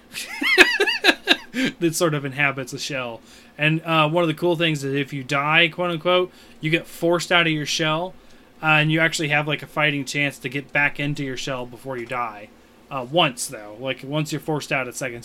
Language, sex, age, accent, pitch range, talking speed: English, male, 20-39, American, 125-155 Hz, 215 wpm